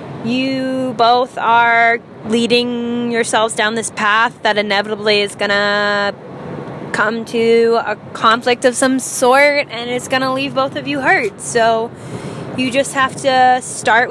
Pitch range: 210-270 Hz